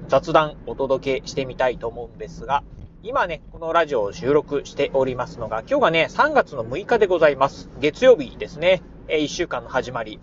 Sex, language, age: male, Japanese, 40-59